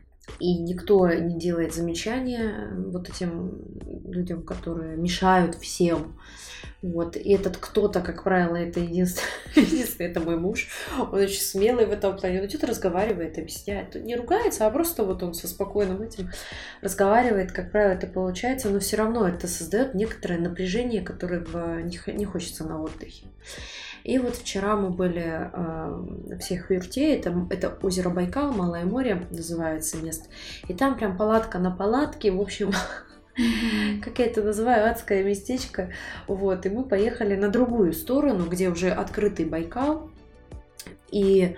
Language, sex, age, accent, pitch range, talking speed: Russian, female, 20-39, native, 175-215 Hz, 145 wpm